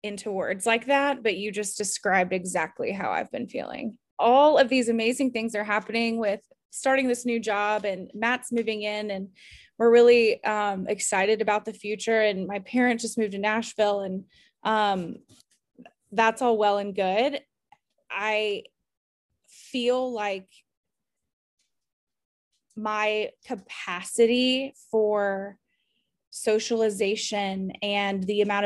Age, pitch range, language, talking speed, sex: 20-39, 200-235 Hz, English, 130 wpm, female